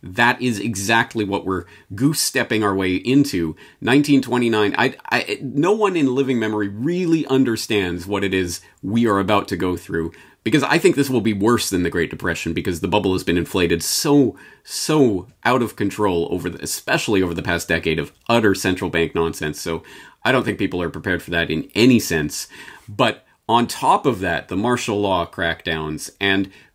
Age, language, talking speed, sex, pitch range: 30-49, English, 190 wpm, male, 100-145 Hz